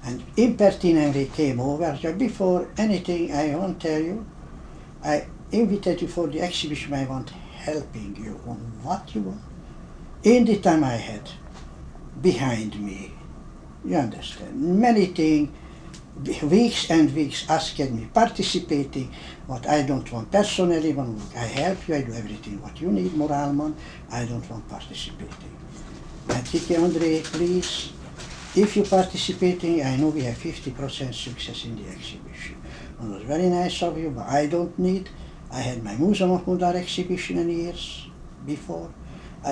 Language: English